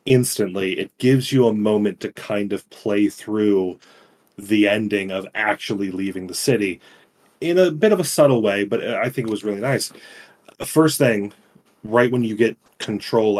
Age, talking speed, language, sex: 30-49, 175 wpm, English, male